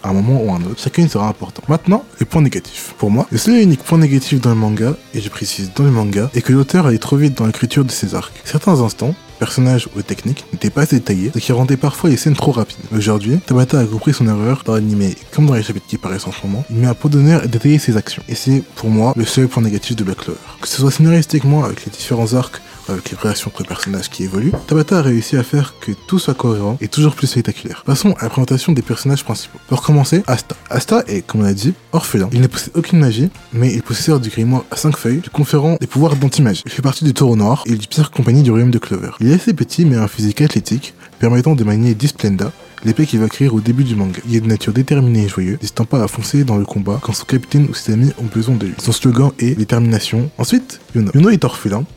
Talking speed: 265 wpm